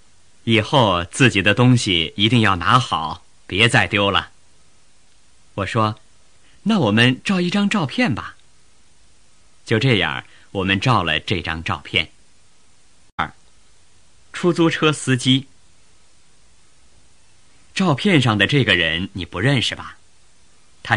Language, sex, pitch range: Chinese, male, 90-125 Hz